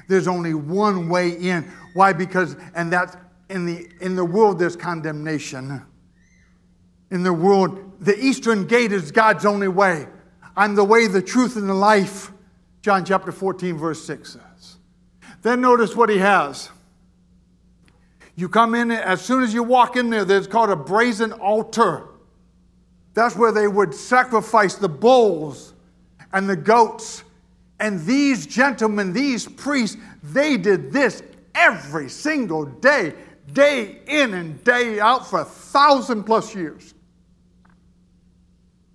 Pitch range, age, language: 155-205 Hz, 60-79, English